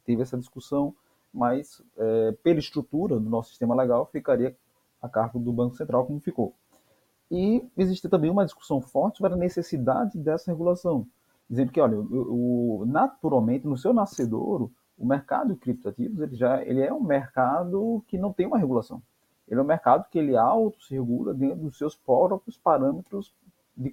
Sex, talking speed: male, 165 wpm